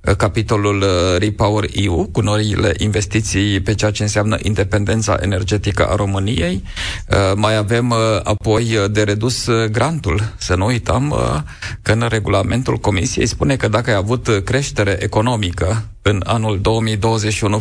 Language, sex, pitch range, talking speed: Romanian, male, 100-115 Hz, 125 wpm